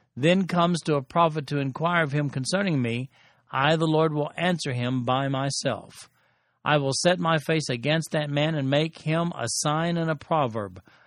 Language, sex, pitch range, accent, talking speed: English, male, 130-165 Hz, American, 190 wpm